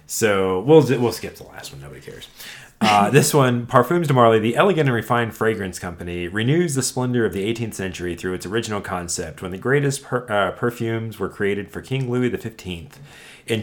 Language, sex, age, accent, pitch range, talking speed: English, male, 30-49, American, 95-125 Hz, 200 wpm